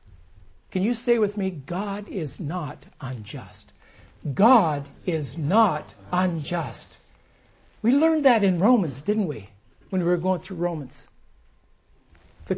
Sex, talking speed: male, 130 wpm